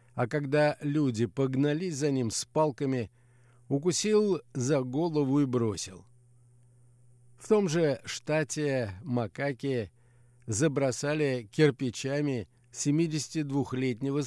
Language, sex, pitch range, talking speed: Russian, male, 120-150 Hz, 90 wpm